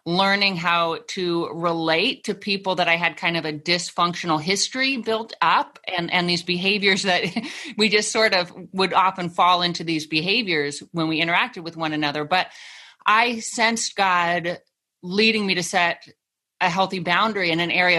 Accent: American